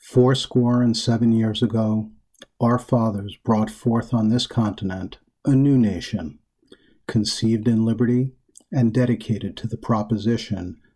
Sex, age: male, 50-69